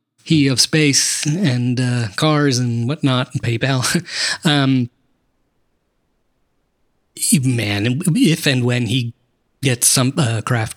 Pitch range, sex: 115-150 Hz, male